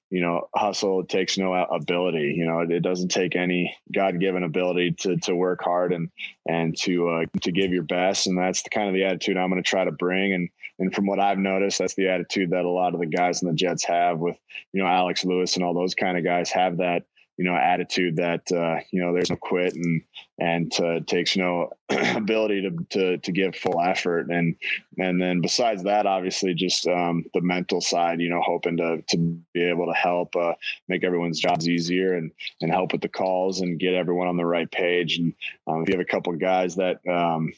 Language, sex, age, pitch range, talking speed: English, male, 20-39, 85-90 Hz, 230 wpm